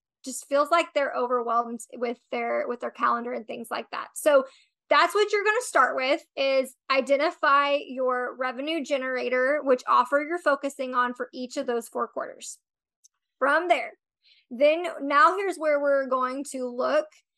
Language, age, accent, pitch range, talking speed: English, 20-39, American, 255-300 Hz, 165 wpm